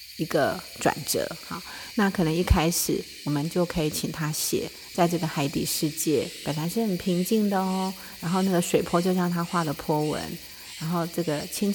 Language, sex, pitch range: Chinese, female, 155-190 Hz